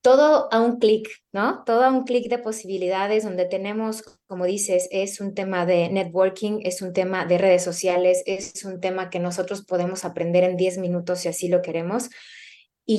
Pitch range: 180-220 Hz